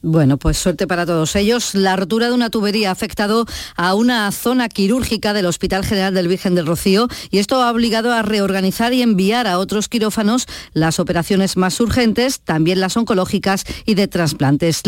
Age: 40-59